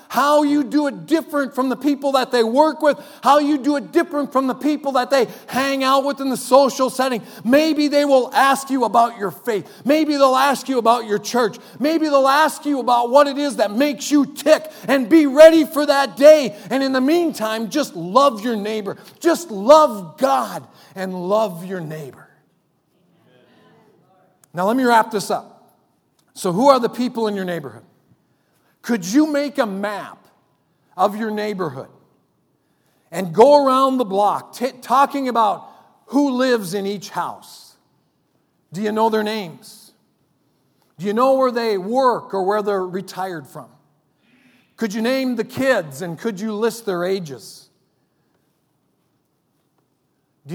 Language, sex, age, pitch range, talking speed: English, male, 40-59, 190-275 Hz, 165 wpm